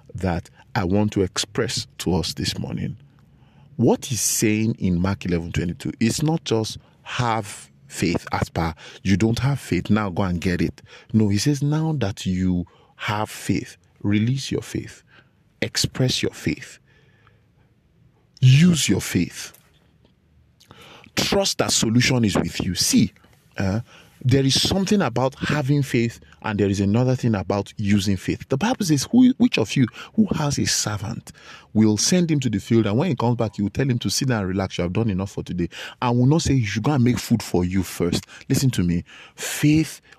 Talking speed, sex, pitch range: 190 wpm, male, 95-135 Hz